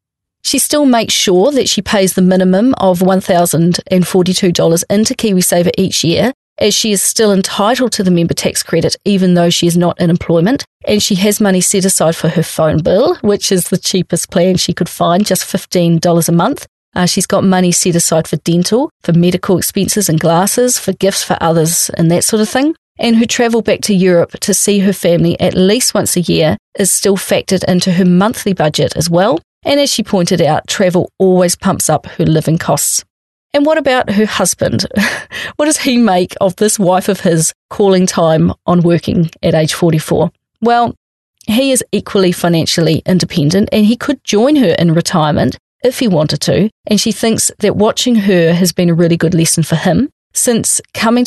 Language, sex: English, female